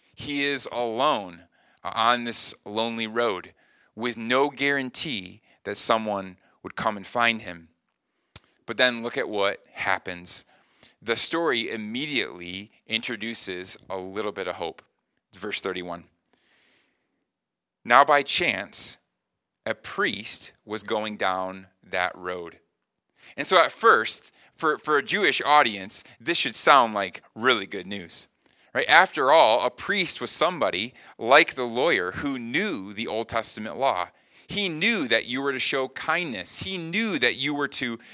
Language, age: English, 30-49